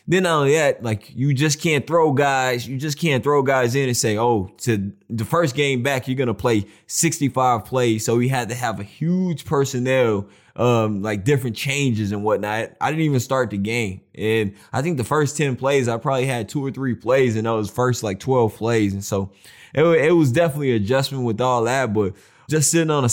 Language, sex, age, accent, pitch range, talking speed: English, male, 20-39, American, 110-140 Hz, 220 wpm